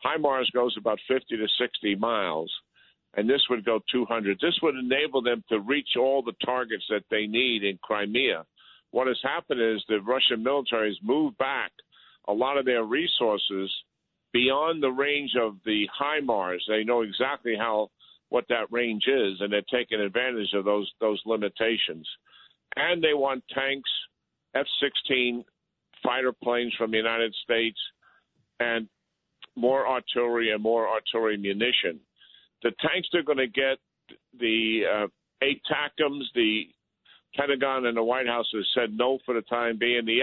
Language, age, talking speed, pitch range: English, 50-69, 160 wpm, 110-135 Hz